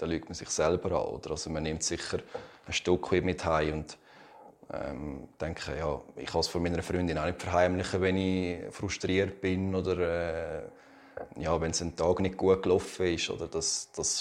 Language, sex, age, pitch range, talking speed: German, male, 30-49, 85-100 Hz, 195 wpm